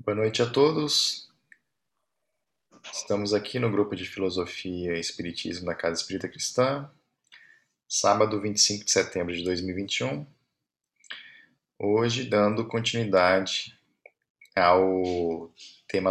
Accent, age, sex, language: Brazilian, 20-39, male, Portuguese